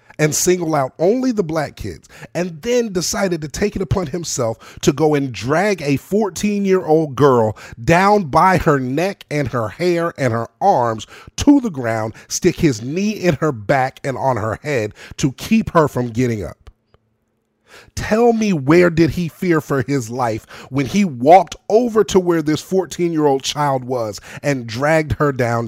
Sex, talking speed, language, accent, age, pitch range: male, 180 wpm, English, American, 30-49, 115-170 Hz